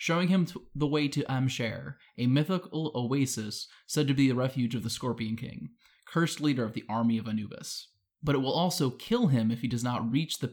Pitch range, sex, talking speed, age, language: 120-145 Hz, male, 210 wpm, 20-39, English